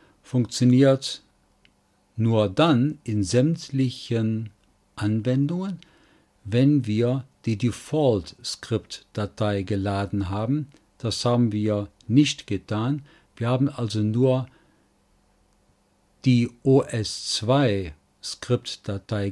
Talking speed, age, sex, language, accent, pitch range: 70 wpm, 50-69, male, German, German, 100-130 Hz